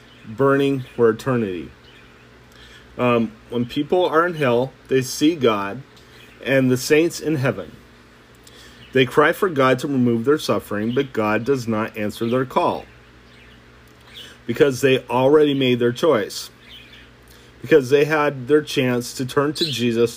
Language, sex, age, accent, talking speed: English, male, 40-59, American, 140 wpm